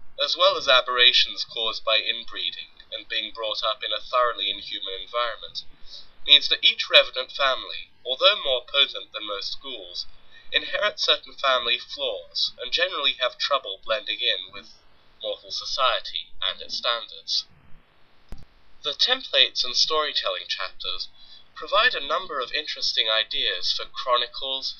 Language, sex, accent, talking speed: English, male, British, 135 wpm